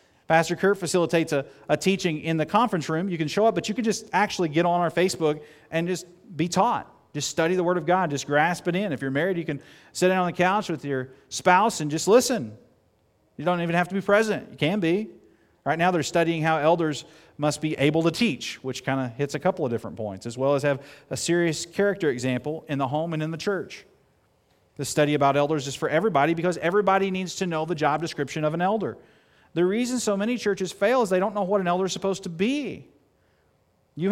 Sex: male